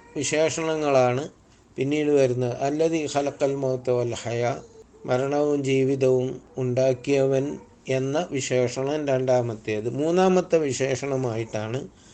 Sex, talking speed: male, 75 wpm